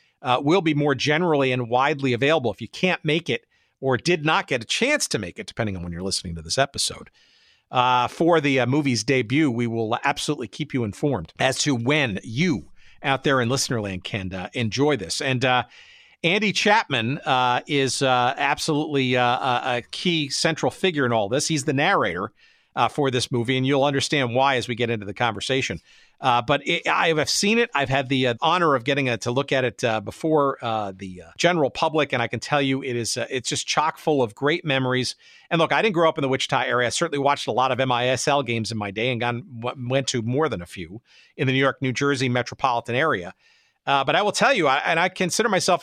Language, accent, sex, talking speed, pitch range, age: English, American, male, 230 wpm, 120-155 Hz, 50-69